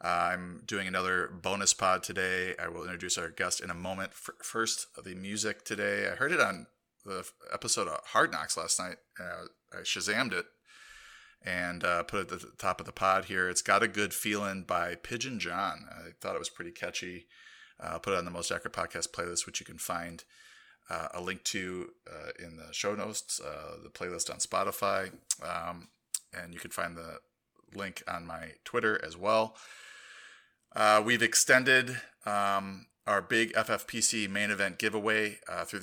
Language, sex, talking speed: English, male, 185 wpm